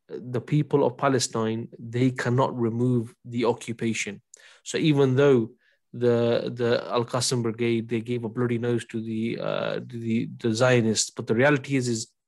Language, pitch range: English, 120-140 Hz